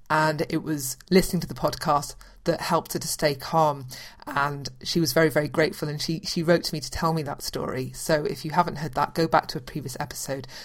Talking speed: 235 wpm